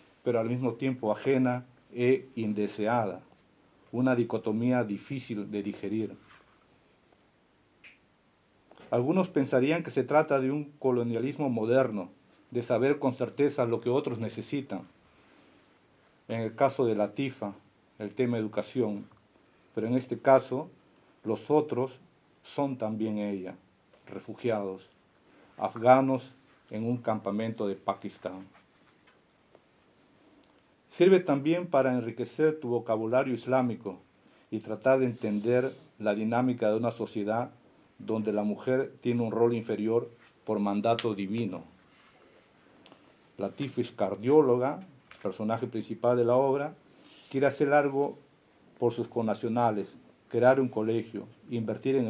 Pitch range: 110-130 Hz